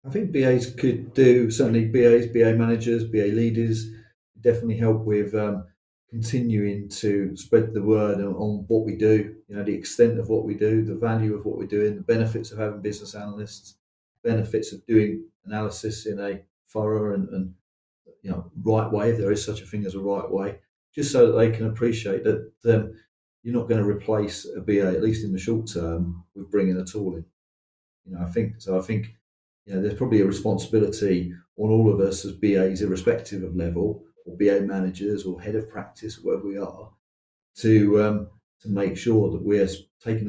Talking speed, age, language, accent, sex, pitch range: 200 wpm, 40-59, English, British, male, 95-110 Hz